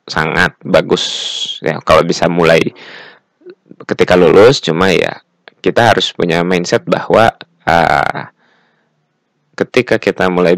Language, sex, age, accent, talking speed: Indonesian, male, 20-39, native, 110 wpm